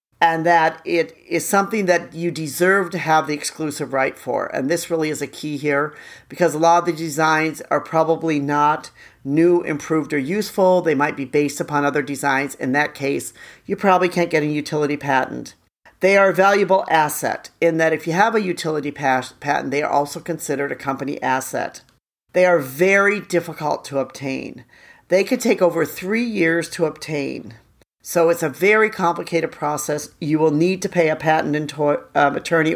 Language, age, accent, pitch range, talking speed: English, 50-69, American, 150-180 Hz, 180 wpm